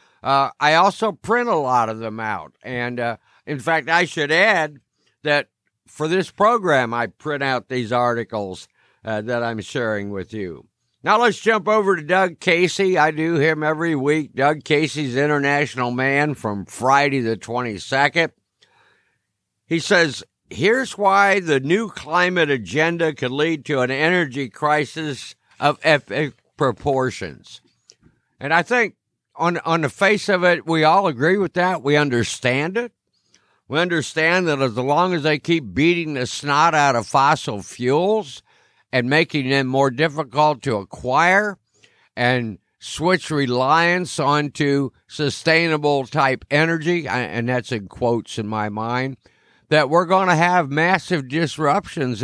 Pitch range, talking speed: 125-170 Hz, 145 wpm